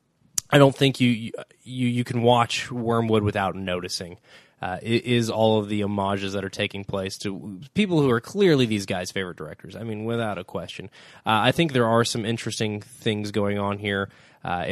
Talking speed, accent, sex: 195 wpm, American, male